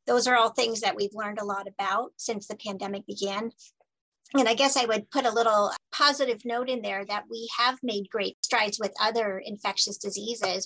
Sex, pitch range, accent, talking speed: female, 205-250 Hz, American, 205 wpm